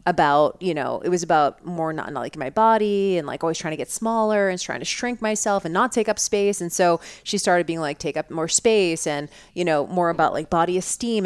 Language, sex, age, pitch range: English, female, 30-49, 165-215 Hz